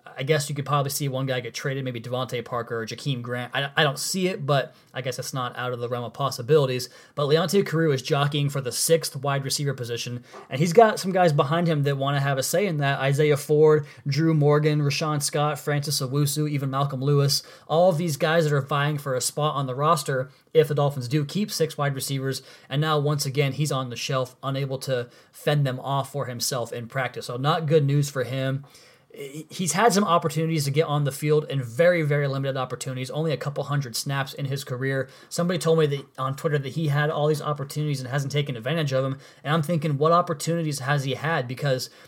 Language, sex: English, male